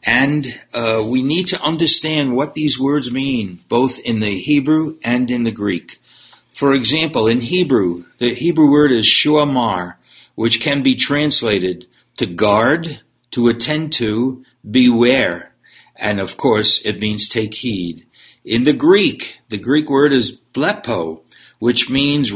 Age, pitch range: 60-79, 110-145 Hz